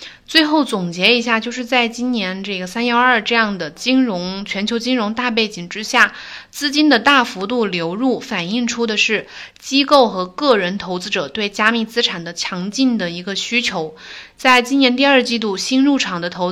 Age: 20-39